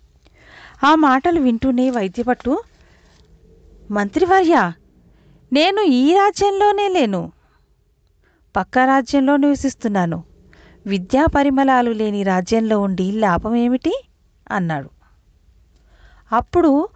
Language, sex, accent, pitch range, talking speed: Telugu, female, native, 195-280 Hz, 70 wpm